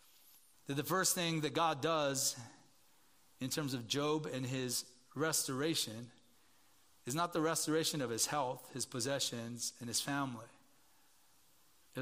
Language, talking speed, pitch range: English, 135 wpm, 120-150 Hz